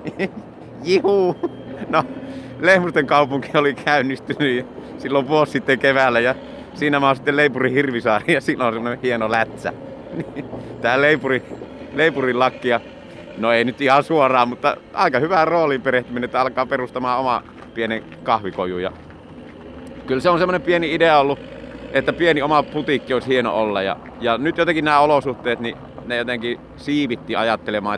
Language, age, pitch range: Finnish, 30-49, 115-145 Hz